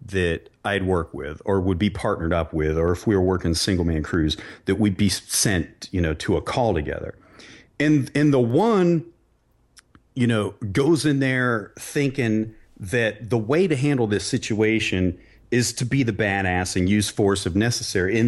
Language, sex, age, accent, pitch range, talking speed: English, male, 40-59, American, 95-130 Hz, 185 wpm